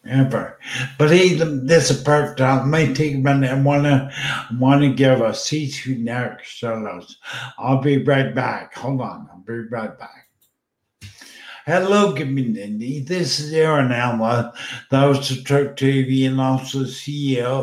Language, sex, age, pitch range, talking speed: English, male, 60-79, 125-145 Hz, 160 wpm